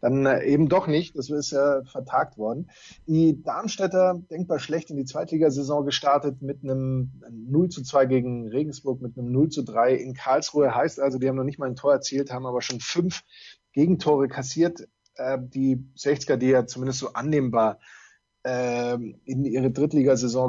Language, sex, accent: German, male, German